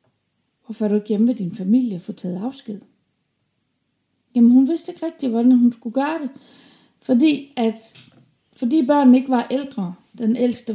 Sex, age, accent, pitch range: female, 40-59, native, 200-265 Hz